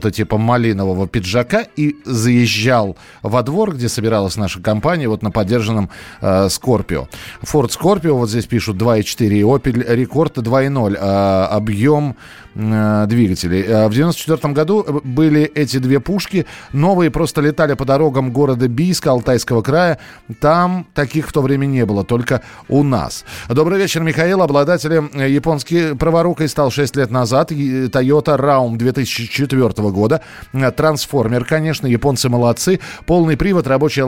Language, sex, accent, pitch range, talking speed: Russian, male, native, 110-150 Hz, 135 wpm